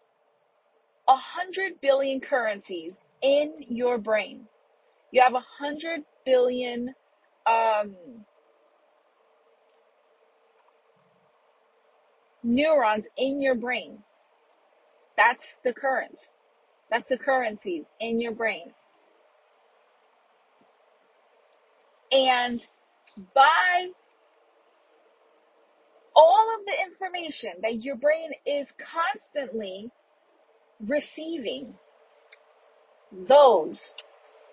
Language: English